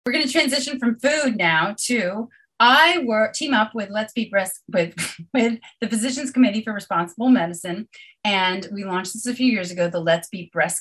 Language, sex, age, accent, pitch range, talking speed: English, female, 30-49, American, 175-250 Hz, 200 wpm